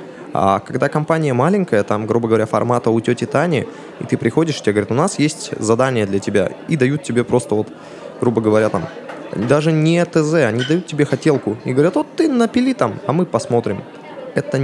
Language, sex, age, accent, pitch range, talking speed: Russian, male, 20-39, native, 110-140 Hz, 195 wpm